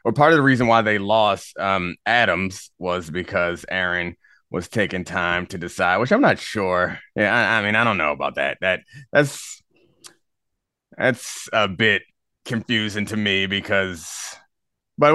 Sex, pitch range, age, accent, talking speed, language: male, 100-130 Hz, 30-49, American, 160 wpm, English